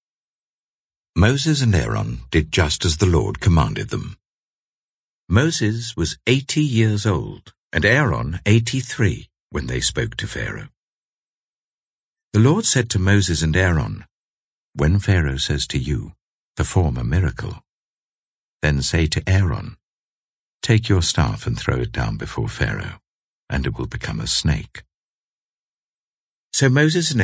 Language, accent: English, British